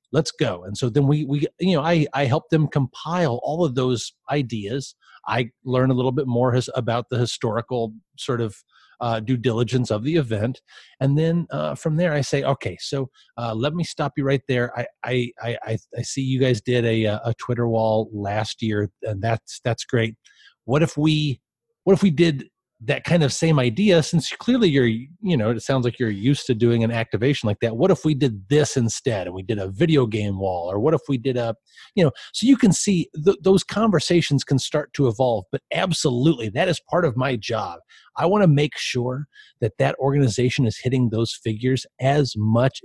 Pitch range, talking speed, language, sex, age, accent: 115-150 Hz, 210 wpm, English, male, 30-49, American